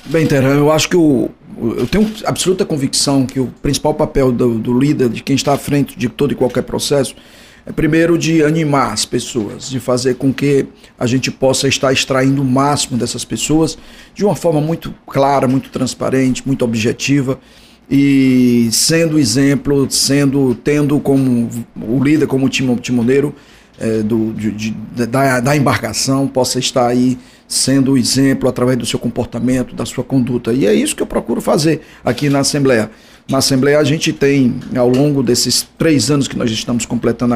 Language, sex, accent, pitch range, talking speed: Portuguese, male, Brazilian, 125-140 Hz, 170 wpm